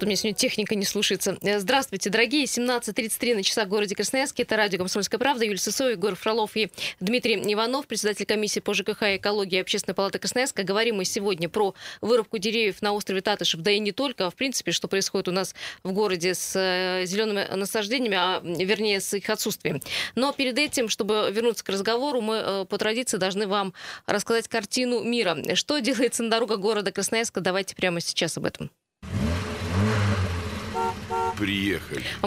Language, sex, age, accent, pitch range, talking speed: Russian, female, 20-39, native, 190-230 Hz, 170 wpm